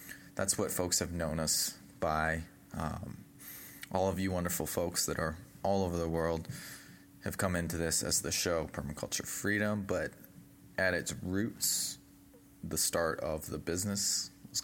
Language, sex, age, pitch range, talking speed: English, male, 20-39, 80-95 Hz, 155 wpm